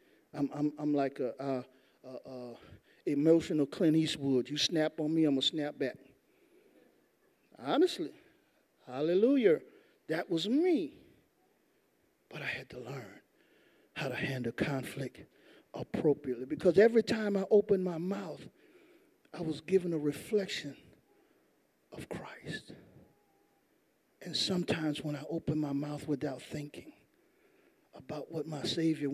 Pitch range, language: 145-200 Hz, English